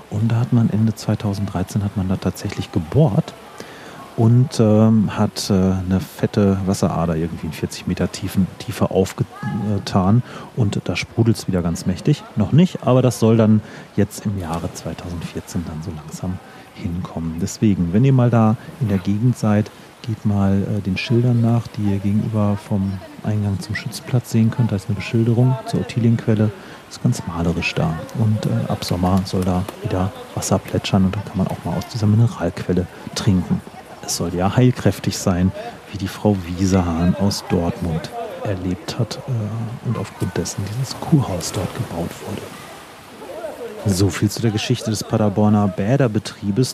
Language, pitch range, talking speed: German, 95-115 Hz, 165 wpm